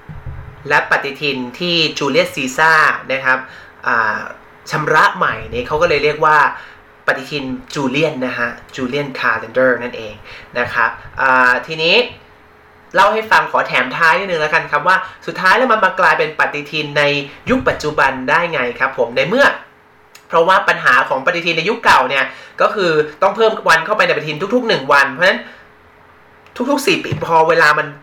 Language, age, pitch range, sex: Thai, 30-49, 140-200 Hz, male